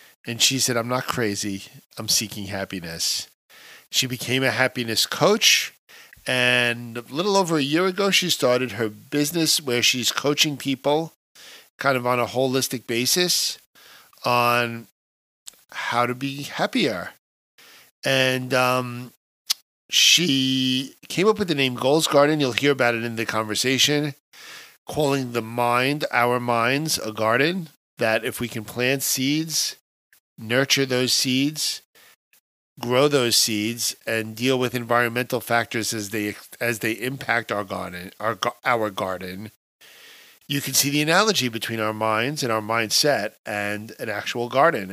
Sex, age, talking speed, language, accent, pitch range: male, 50-69, 140 wpm, English, American, 115-135 Hz